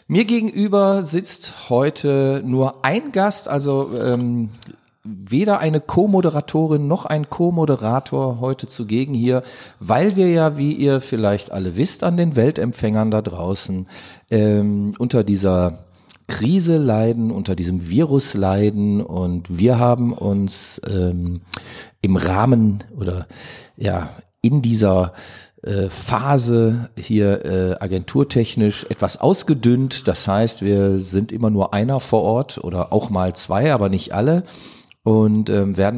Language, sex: German, male